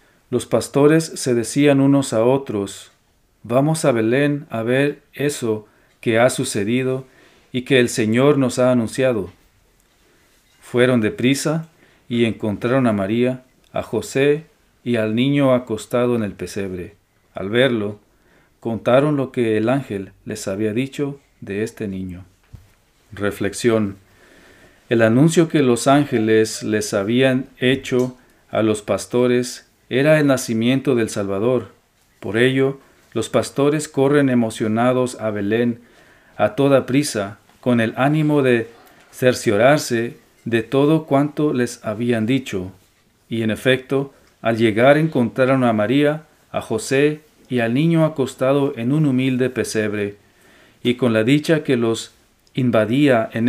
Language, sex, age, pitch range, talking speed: English, male, 40-59, 110-135 Hz, 130 wpm